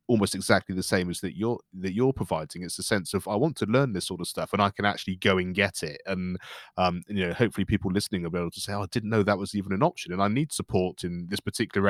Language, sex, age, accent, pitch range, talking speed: English, male, 20-39, British, 95-105 Hz, 290 wpm